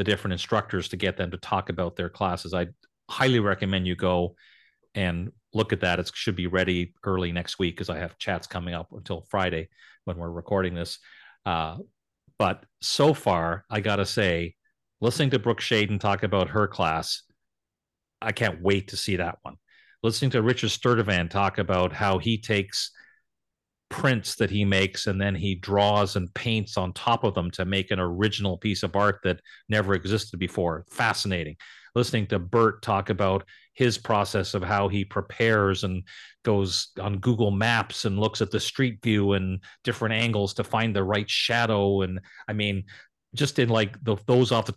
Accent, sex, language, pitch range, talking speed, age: American, male, English, 95-110 Hz, 180 wpm, 40-59